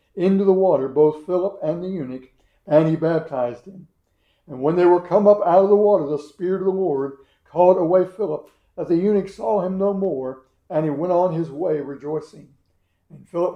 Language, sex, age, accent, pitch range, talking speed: English, male, 60-79, American, 140-185 Hz, 205 wpm